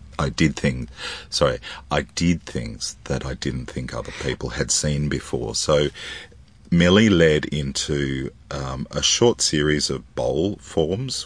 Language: English